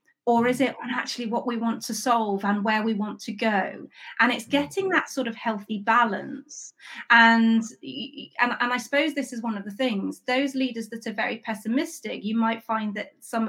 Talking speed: 200 wpm